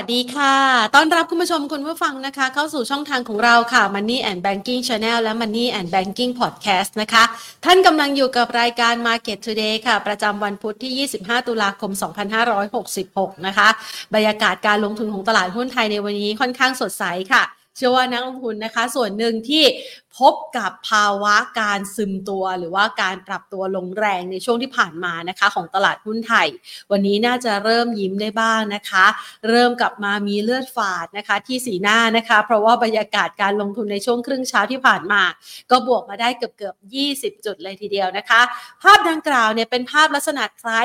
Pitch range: 205-245 Hz